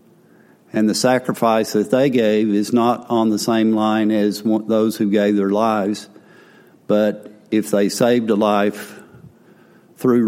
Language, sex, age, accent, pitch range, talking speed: English, male, 50-69, American, 105-120 Hz, 145 wpm